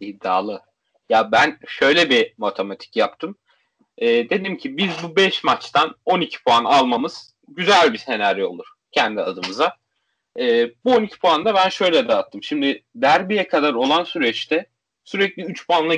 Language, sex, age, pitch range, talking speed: Turkish, male, 30-49, 140-210 Hz, 145 wpm